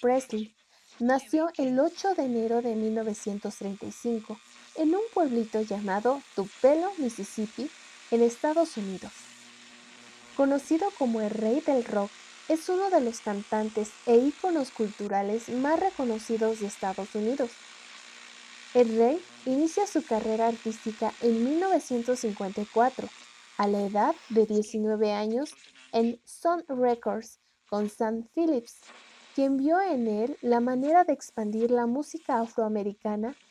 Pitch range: 215-285 Hz